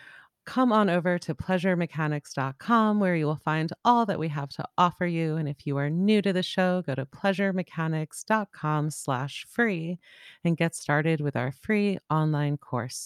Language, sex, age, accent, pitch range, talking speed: English, female, 30-49, American, 140-190 Hz, 170 wpm